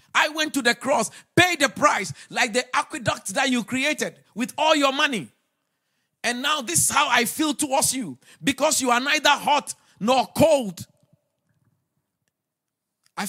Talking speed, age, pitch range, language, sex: 160 wpm, 50-69, 155-235 Hz, English, male